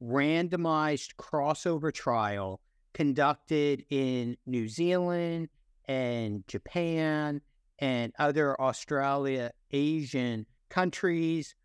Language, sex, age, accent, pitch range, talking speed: English, male, 50-69, American, 125-165 Hz, 70 wpm